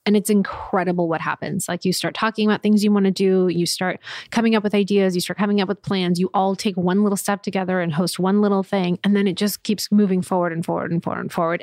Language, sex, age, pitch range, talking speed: English, female, 20-39, 175-210 Hz, 270 wpm